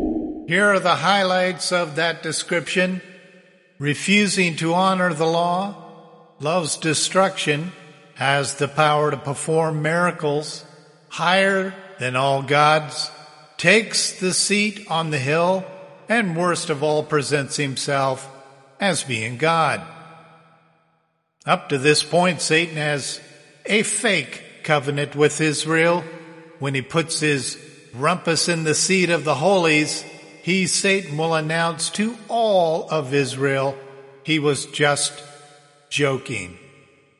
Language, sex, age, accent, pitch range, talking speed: English, male, 50-69, American, 145-175 Hz, 120 wpm